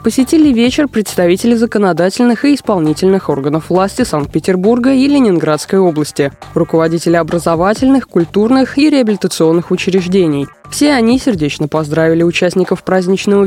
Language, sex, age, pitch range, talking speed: Russian, female, 20-39, 160-235 Hz, 105 wpm